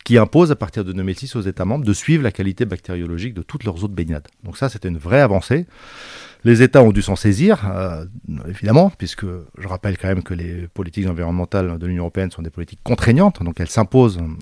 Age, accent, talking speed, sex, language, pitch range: 40-59, French, 220 wpm, male, French, 90-115 Hz